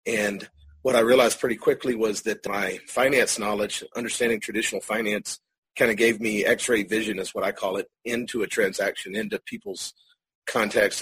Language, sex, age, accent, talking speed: English, male, 40-59, American, 170 wpm